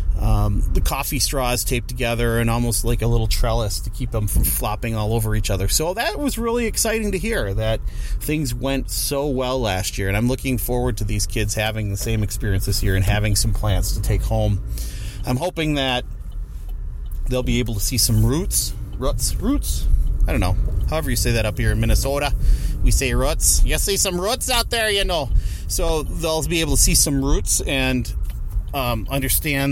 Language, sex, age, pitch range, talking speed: English, male, 30-49, 100-130 Hz, 200 wpm